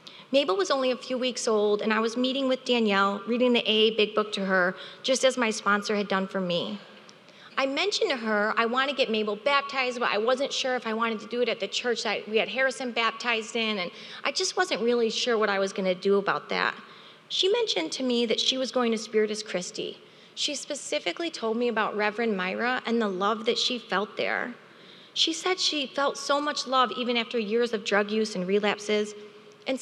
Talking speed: 220 wpm